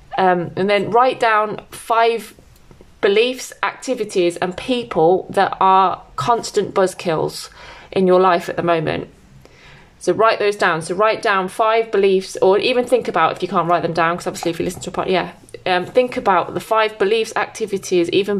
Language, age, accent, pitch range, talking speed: English, 20-39, British, 175-220 Hz, 185 wpm